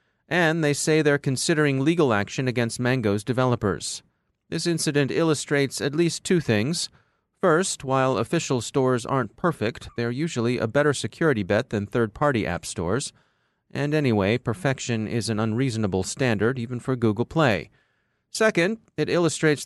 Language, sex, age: English, male, 30-49